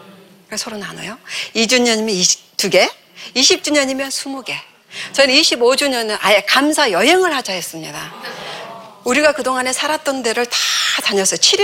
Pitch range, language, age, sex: 195-270 Hz, Korean, 40-59, female